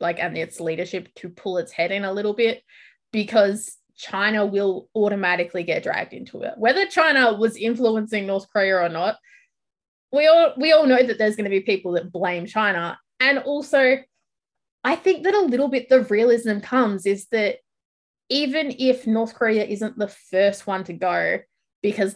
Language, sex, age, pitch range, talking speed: English, female, 20-39, 195-255 Hz, 180 wpm